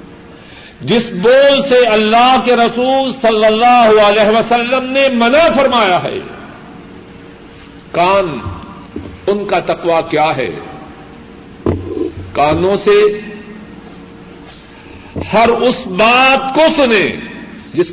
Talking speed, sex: 95 wpm, male